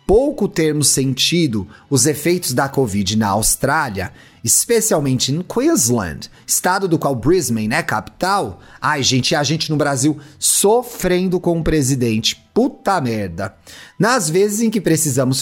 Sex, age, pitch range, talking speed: male, 30-49, 145-225 Hz, 145 wpm